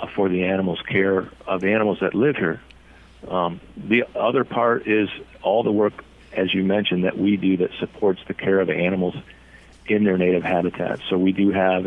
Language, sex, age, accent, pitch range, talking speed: English, male, 50-69, American, 90-100 Hz, 190 wpm